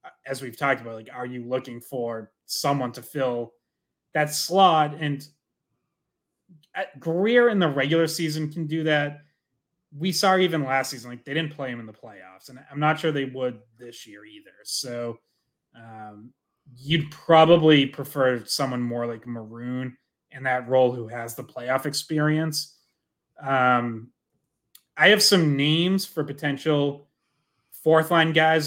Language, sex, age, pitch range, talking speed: English, male, 30-49, 125-160 Hz, 150 wpm